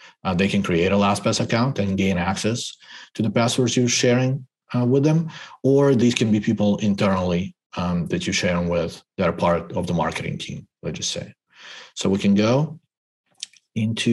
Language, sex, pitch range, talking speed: English, male, 100-120 Hz, 185 wpm